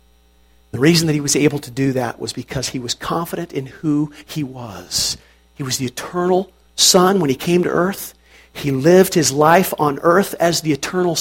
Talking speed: 200 wpm